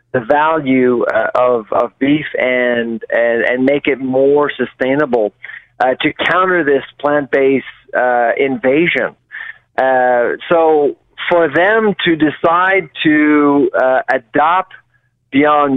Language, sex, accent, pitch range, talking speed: English, male, American, 130-155 Hz, 120 wpm